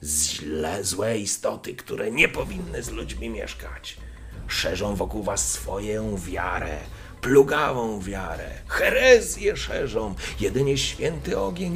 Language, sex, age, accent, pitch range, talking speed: Polish, male, 40-59, native, 85-115 Hz, 105 wpm